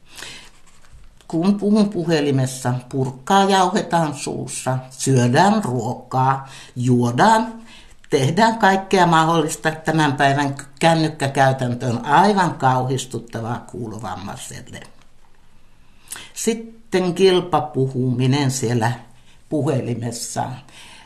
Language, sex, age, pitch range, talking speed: Finnish, male, 60-79, 130-165 Hz, 65 wpm